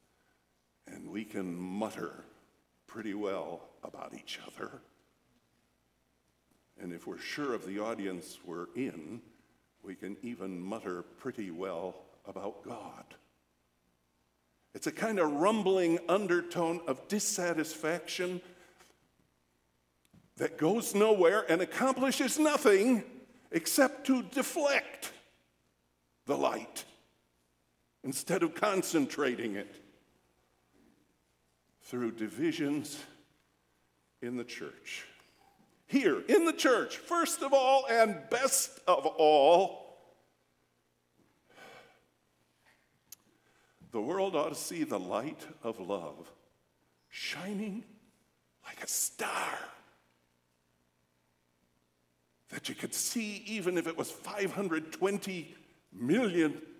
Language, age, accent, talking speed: English, 60-79, American, 95 wpm